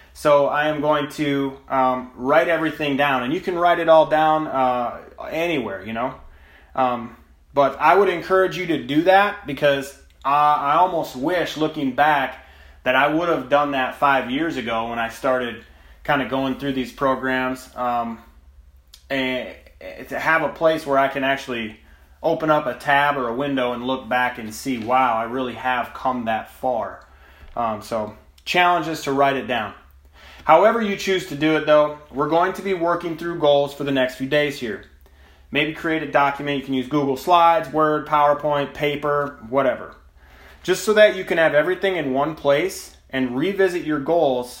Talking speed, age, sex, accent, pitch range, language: 185 wpm, 30-49, male, American, 125-160 Hz, English